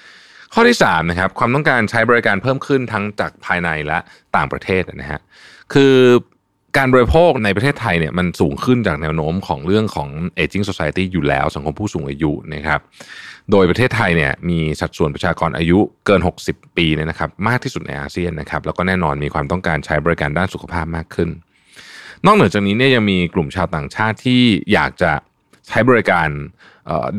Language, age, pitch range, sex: Thai, 20-39, 80-115 Hz, male